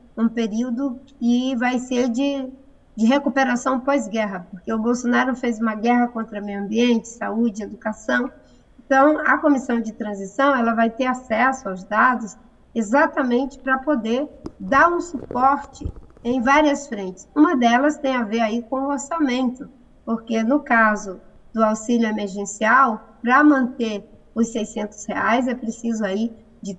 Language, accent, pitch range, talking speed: English, Brazilian, 210-255 Hz, 145 wpm